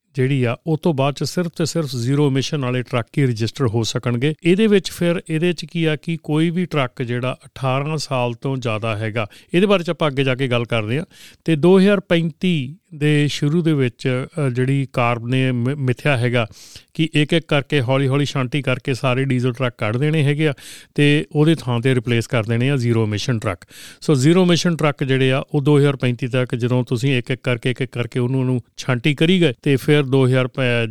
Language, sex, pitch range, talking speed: Punjabi, male, 125-155 Hz, 165 wpm